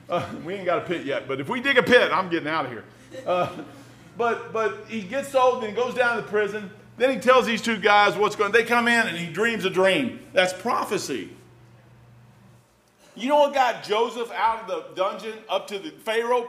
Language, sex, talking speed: English, male, 225 wpm